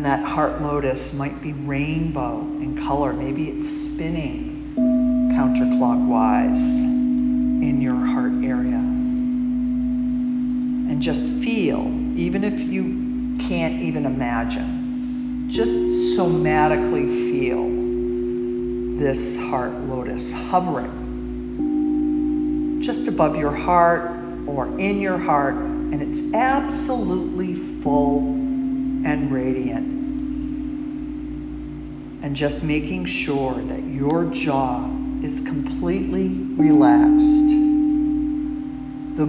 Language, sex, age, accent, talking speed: English, female, 50-69, American, 85 wpm